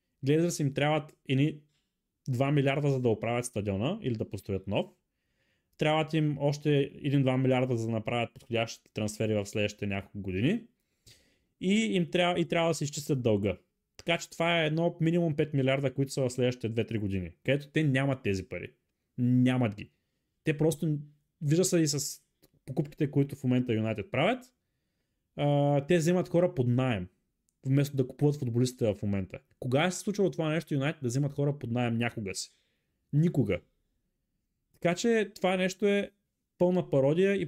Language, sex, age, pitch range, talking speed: Bulgarian, male, 20-39, 120-160 Hz, 170 wpm